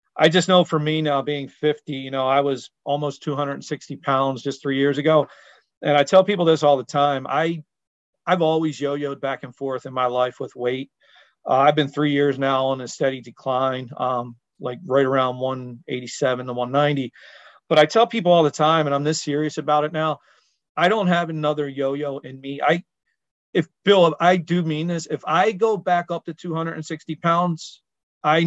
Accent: American